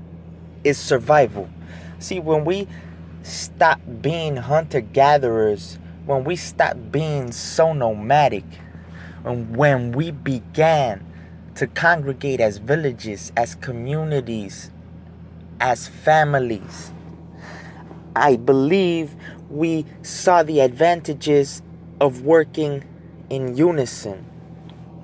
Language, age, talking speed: English, 20-39, 90 wpm